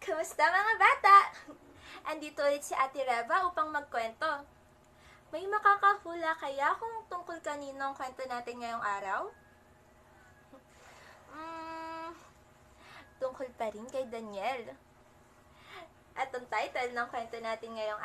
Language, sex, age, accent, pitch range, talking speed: Filipino, female, 20-39, native, 205-290 Hz, 115 wpm